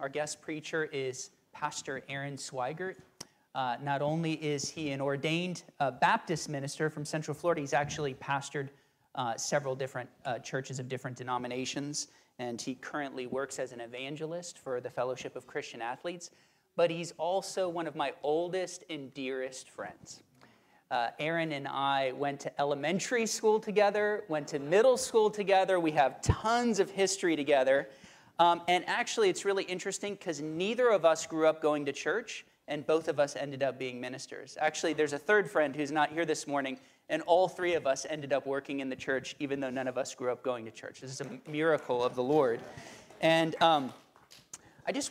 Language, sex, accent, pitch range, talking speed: English, male, American, 135-170 Hz, 185 wpm